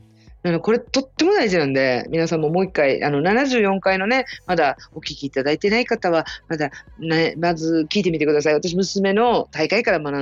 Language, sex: Japanese, female